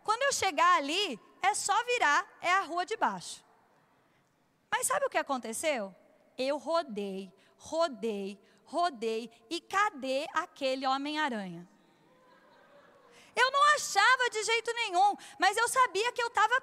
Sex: female